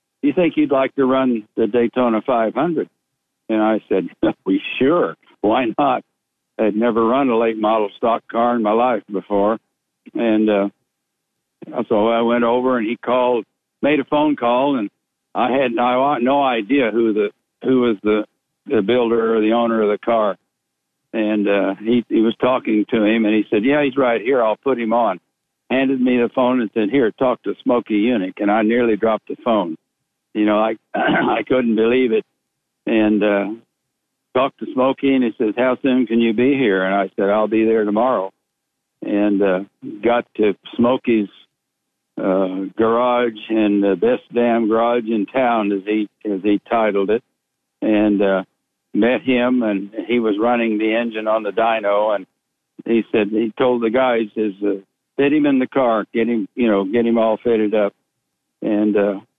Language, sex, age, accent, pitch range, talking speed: English, male, 60-79, American, 105-125 Hz, 185 wpm